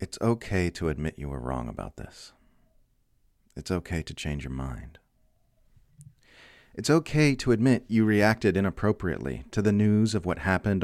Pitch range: 85-115 Hz